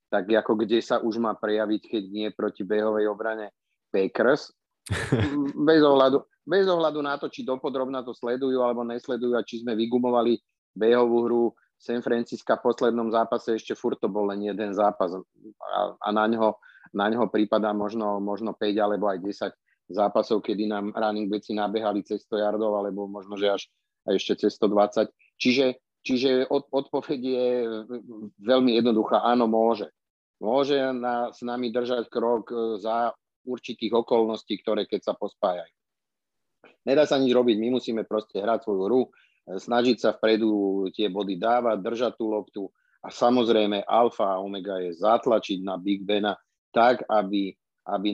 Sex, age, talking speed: male, 40-59, 155 wpm